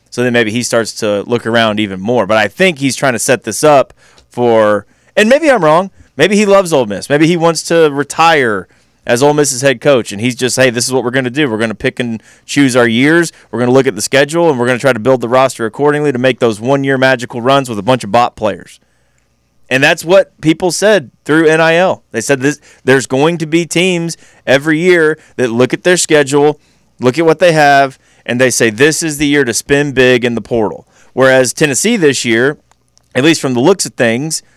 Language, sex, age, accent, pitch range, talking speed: English, male, 30-49, American, 115-150 Hz, 240 wpm